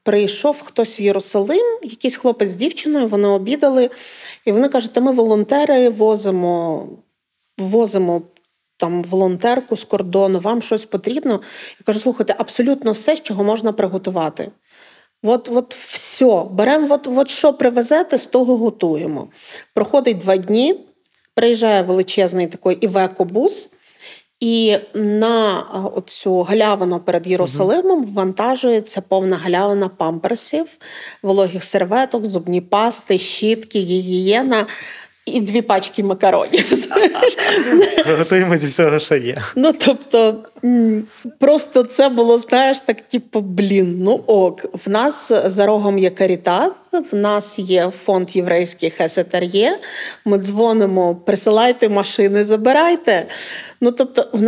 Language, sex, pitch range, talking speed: Ukrainian, female, 195-255 Hz, 120 wpm